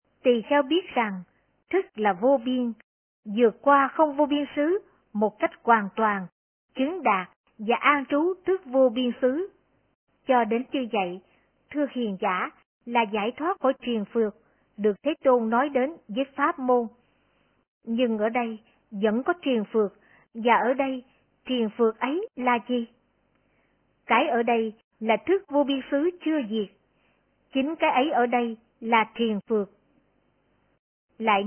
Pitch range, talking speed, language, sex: 220-280 Hz, 155 wpm, Vietnamese, male